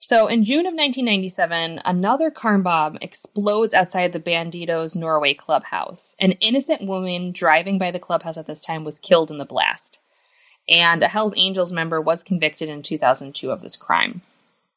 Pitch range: 155-205 Hz